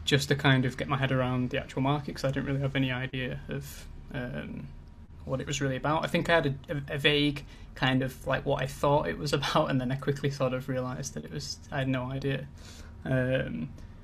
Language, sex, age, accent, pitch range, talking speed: English, male, 20-39, British, 125-145 Hz, 240 wpm